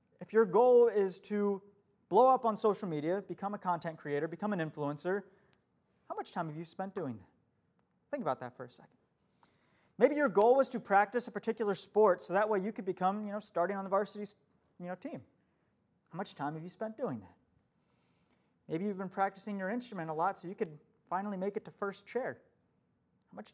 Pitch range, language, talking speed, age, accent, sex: 170-225 Hz, English, 210 wpm, 30-49, American, male